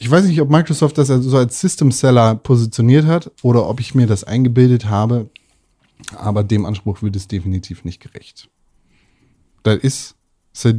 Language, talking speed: German, 170 wpm